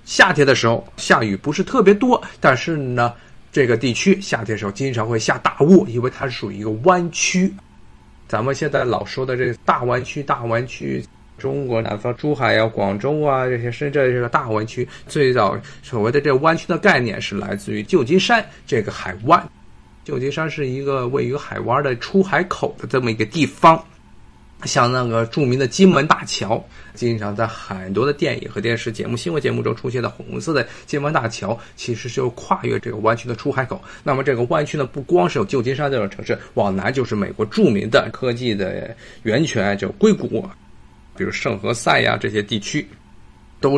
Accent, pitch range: native, 110-145 Hz